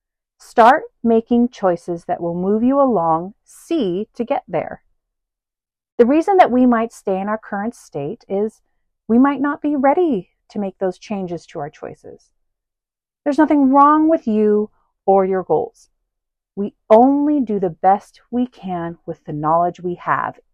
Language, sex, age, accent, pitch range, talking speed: English, female, 40-59, American, 180-245 Hz, 160 wpm